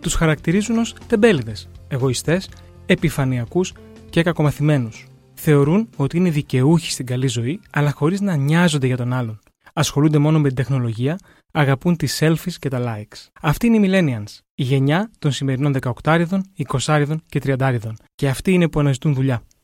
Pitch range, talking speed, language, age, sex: 135-170 Hz, 155 wpm, Greek, 20-39, male